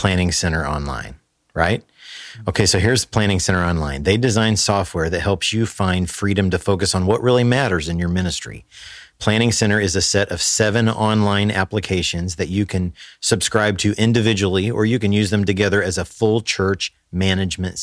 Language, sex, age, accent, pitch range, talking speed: English, male, 40-59, American, 95-115 Hz, 180 wpm